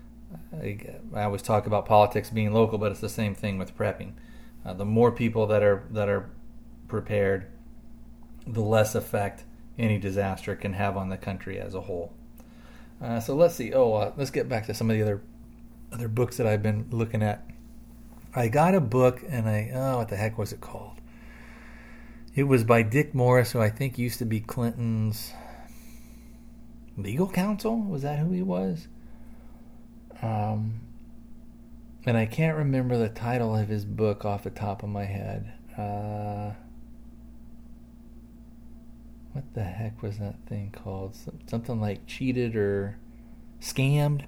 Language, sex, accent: English, male, American